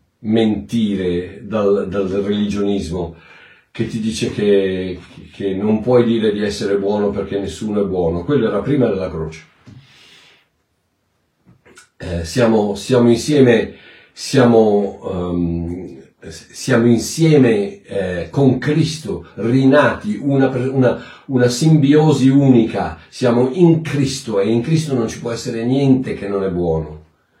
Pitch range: 100-145 Hz